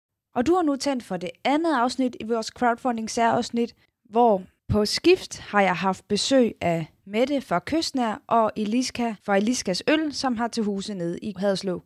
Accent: native